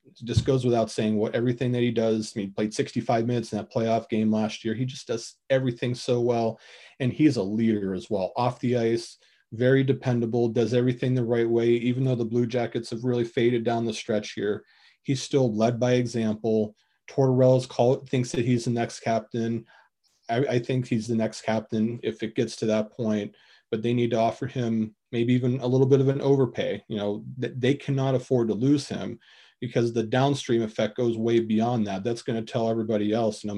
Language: English